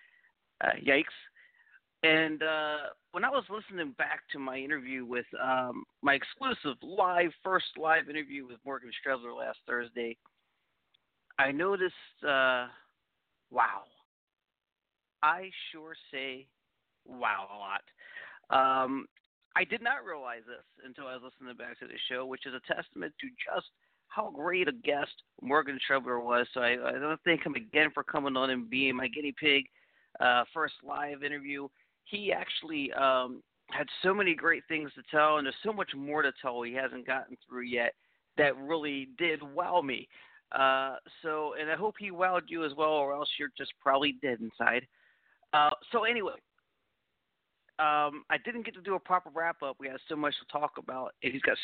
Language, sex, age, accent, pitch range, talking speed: English, male, 40-59, American, 135-165 Hz, 170 wpm